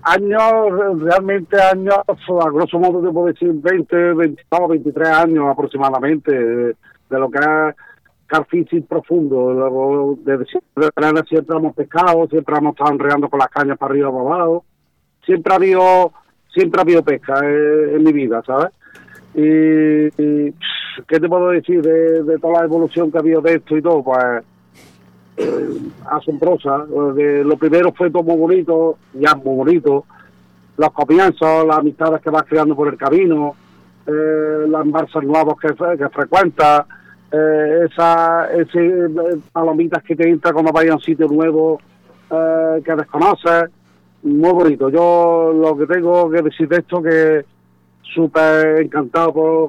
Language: Spanish